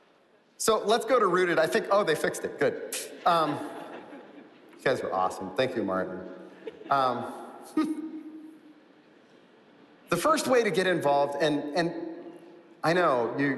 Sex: male